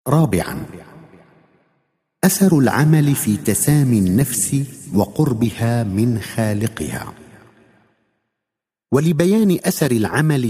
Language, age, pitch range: Arabic, 50-69, 100-145 Hz